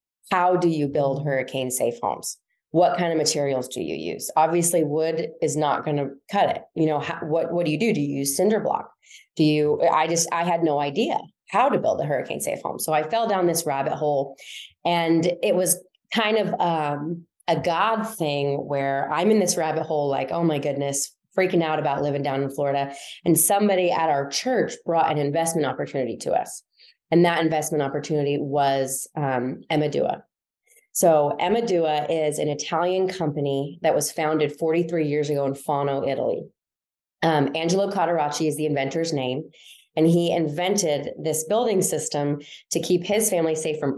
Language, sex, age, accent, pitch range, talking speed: English, female, 20-39, American, 145-170 Hz, 185 wpm